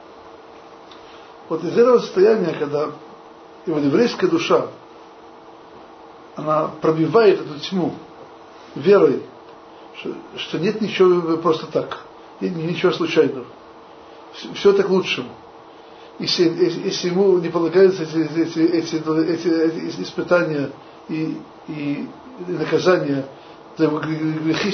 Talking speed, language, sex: 100 wpm, Russian, male